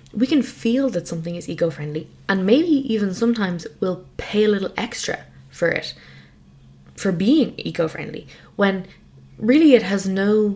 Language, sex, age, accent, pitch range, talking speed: English, female, 20-39, Irish, 160-210 Hz, 150 wpm